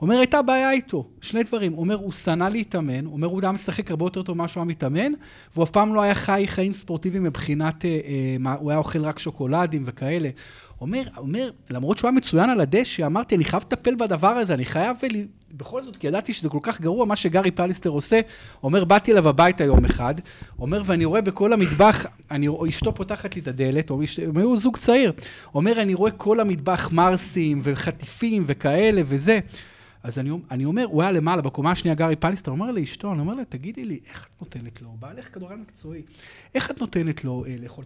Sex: male